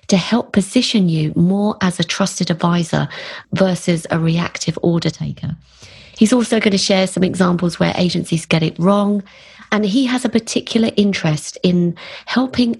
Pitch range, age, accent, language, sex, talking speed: 165-195 Hz, 30-49, British, English, female, 160 wpm